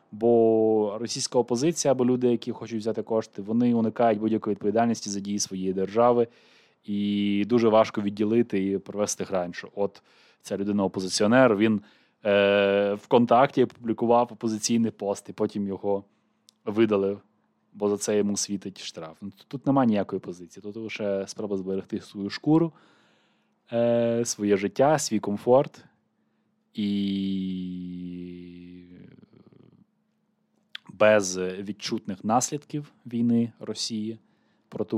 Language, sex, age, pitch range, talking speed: Ukrainian, male, 20-39, 95-110 Hz, 115 wpm